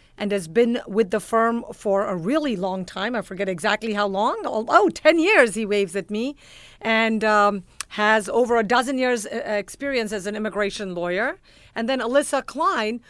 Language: English